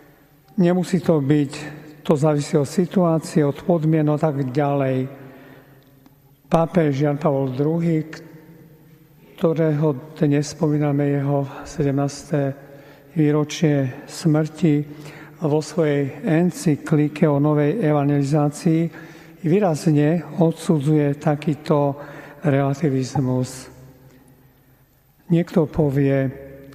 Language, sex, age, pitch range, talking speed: Slovak, male, 50-69, 140-155 Hz, 80 wpm